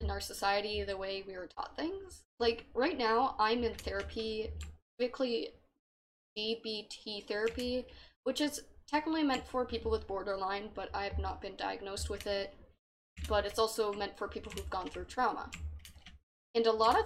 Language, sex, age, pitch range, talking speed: English, female, 10-29, 195-230 Hz, 170 wpm